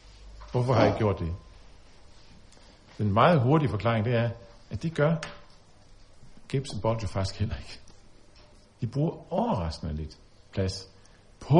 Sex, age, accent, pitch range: male, 50-69, native, 95-125 Hz